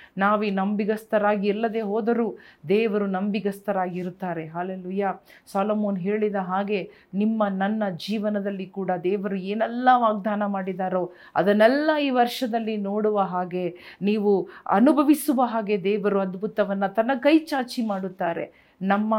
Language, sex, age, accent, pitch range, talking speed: Kannada, female, 40-59, native, 195-230 Hz, 105 wpm